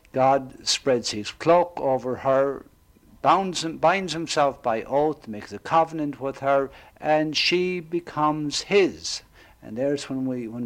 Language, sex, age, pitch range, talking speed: English, male, 60-79, 125-155 Hz, 130 wpm